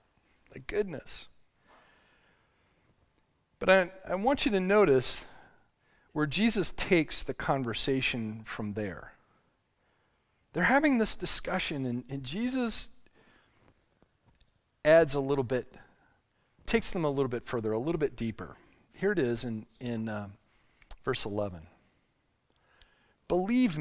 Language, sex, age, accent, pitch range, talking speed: English, male, 40-59, American, 125-190 Hz, 115 wpm